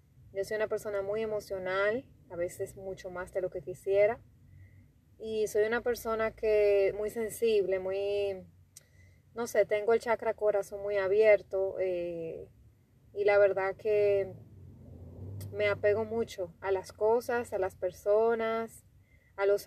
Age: 20-39